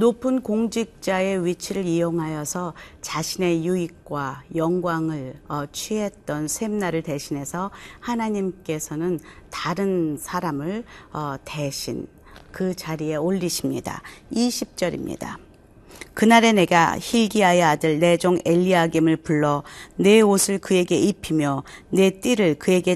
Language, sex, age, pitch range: Korean, female, 40-59, 160-195 Hz